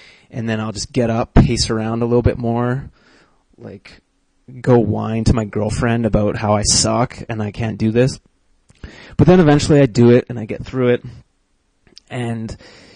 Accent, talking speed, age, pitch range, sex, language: American, 180 wpm, 30-49, 110-130 Hz, male, English